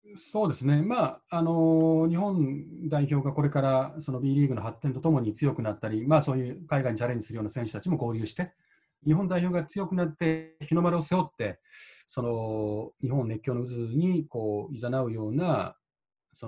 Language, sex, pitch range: Japanese, male, 115-160 Hz